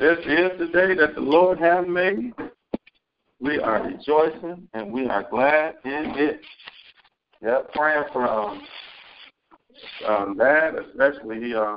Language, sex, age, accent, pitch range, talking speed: English, male, 60-79, American, 110-130 Hz, 125 wpm